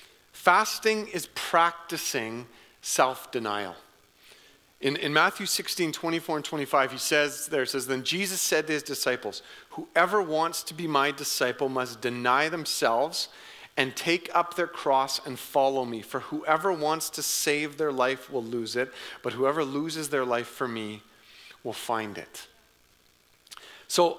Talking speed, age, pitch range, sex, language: 150 wpm, 40-59, 135-175 Hz, male, English